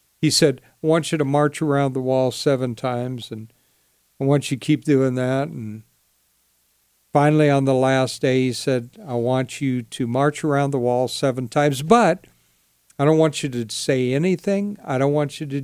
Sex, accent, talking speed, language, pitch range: male, American, 195 wpm, English, 130-160 Hz